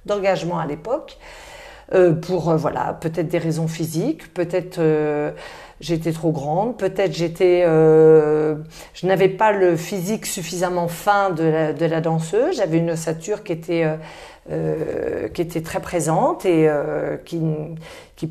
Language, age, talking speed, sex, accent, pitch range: English, 40-59, 120 wpm, female, French, 160-200 Hz